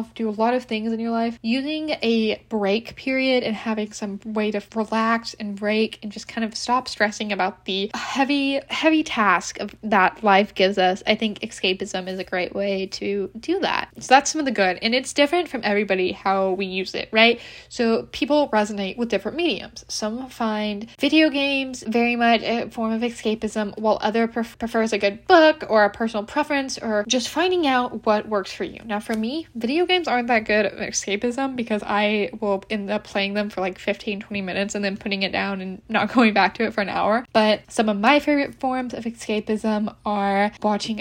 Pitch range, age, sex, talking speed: 205-245 Hz, 10-29, female, 205 wpm